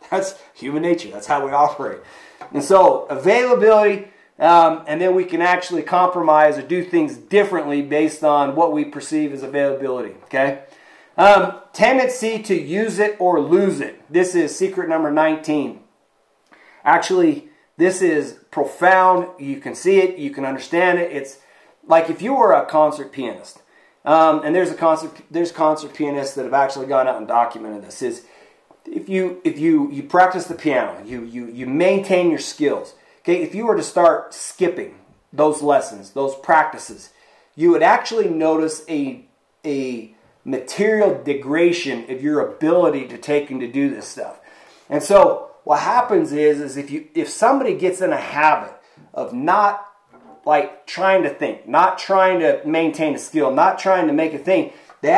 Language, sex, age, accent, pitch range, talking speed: English, male, 30-49, American, 150-215 Hz, 170 wpm